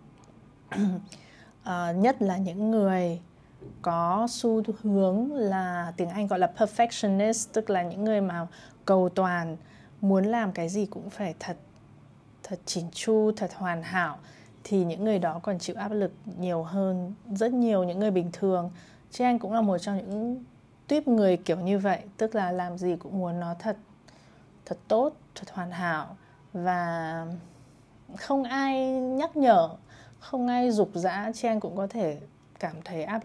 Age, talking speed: 20-39, 165 wpm